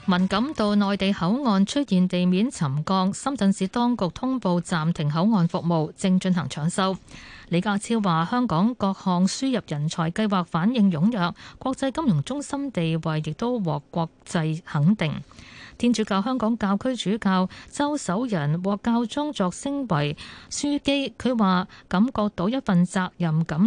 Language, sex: Chinese, female